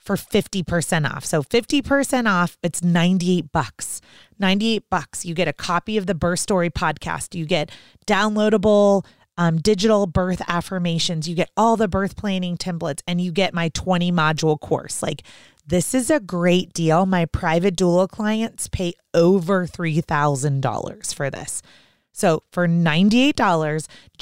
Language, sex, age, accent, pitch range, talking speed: English, female, 30-49, American, 160-200 Hz, 145 wpm